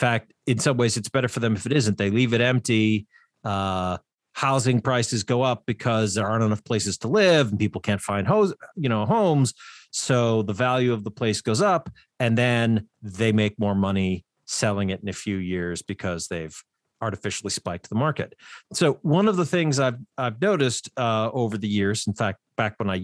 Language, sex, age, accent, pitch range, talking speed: English, male, 40-59, American, 105-140 Hz, 205 wpm